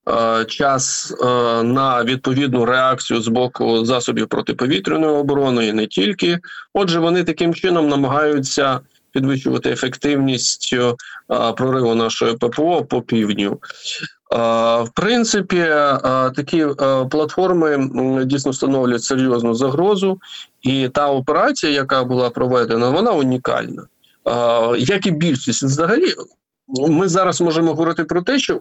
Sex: male